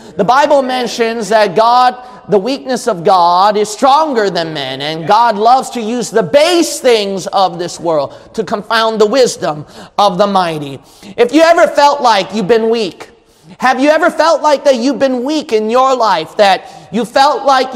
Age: 30-49